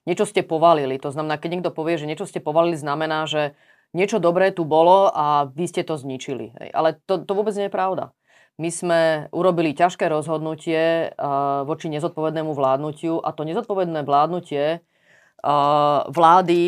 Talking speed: 155 wpm